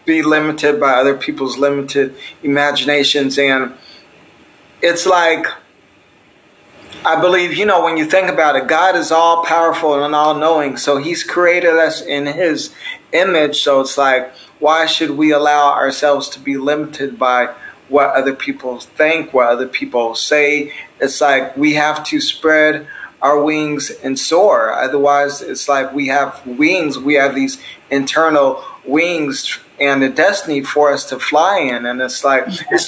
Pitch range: 140-170 Hz